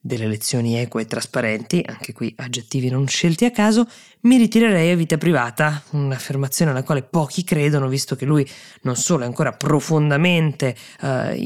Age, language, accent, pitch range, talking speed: 20-39, Italian, native, 130-165 Hz, 160 wpm